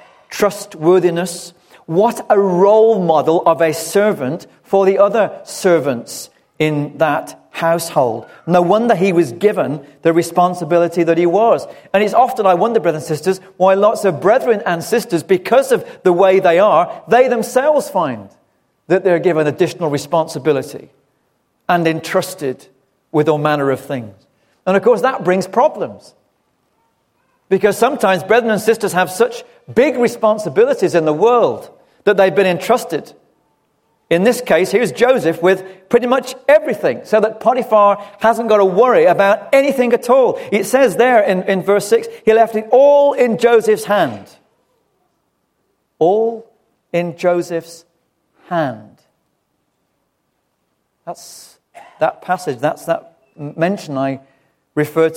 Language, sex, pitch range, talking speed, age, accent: English, male, 170-230 Hz, 140 wpm, 40-59, British